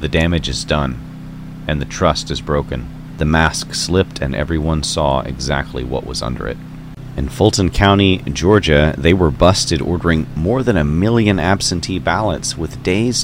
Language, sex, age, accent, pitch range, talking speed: English, male, 40-59, American, 85-135 Hz, 165 wpm